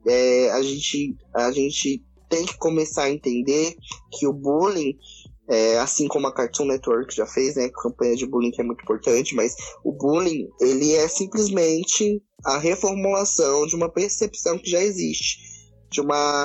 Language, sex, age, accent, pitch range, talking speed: Portuguese, male, 20-39, Brazilian, 135-170 Hz, 155 wpm